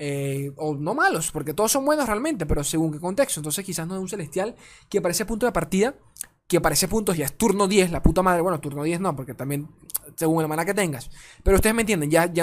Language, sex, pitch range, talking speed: Spanish, male, 150-195 Hz, 250 wpm